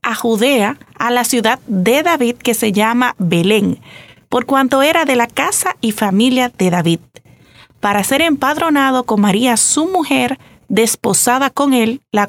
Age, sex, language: 30-49, female, Spanish